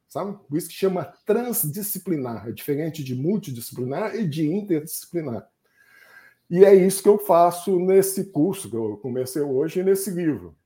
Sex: male